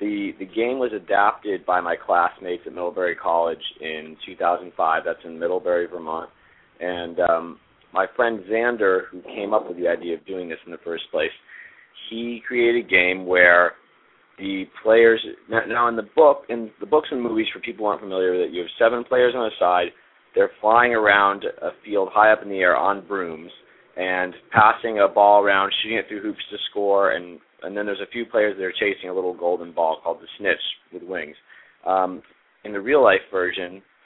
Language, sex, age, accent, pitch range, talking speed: English, male, 30-49, American, 90-115 Hz, 200 wpm